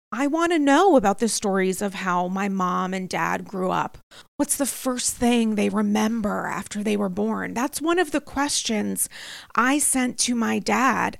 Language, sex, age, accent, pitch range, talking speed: English, female, 30-49, American, 210-270 Hz, 190 wpm